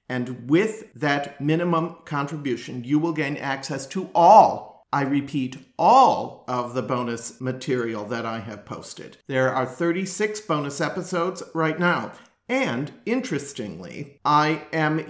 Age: 50-69